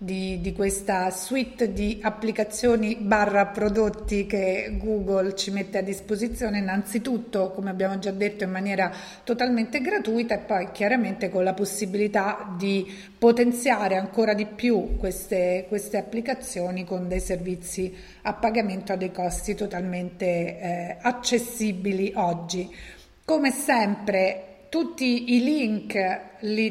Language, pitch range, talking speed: Italian, 190-230 Hz, 125 wpm